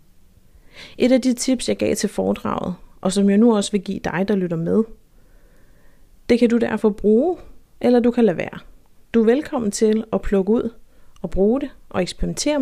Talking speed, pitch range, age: 195 wpm, 190-230 Hz, 30-49